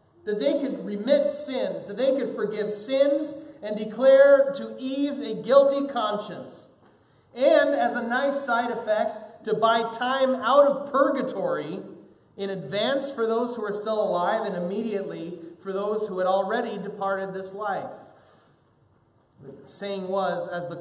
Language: English